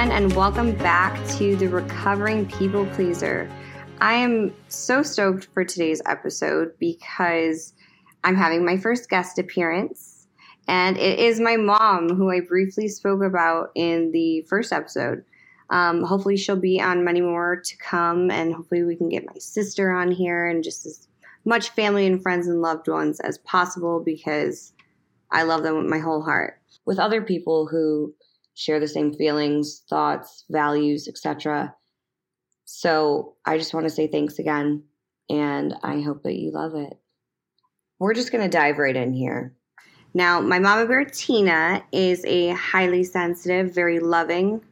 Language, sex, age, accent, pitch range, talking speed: English, female, 20-39, American, 160-200 Hz, 160 wpm